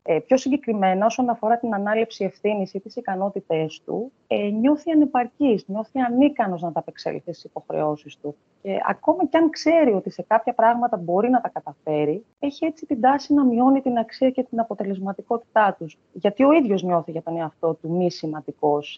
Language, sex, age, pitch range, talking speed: Greek, female, 30-49, 175-265 Hz, 175 wpm